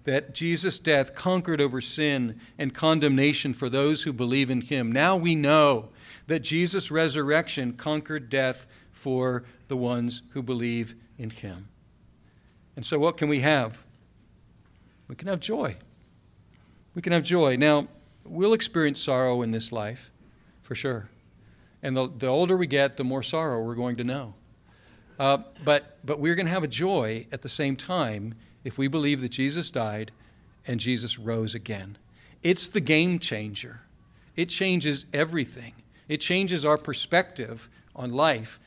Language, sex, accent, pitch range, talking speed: English, male, American, 120-150 Hz, 155 wpm